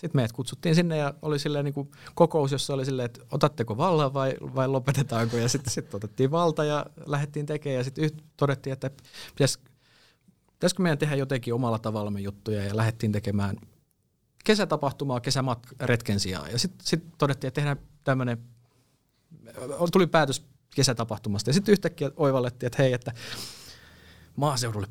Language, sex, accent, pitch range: Finnish, male, native, 115-145 Hz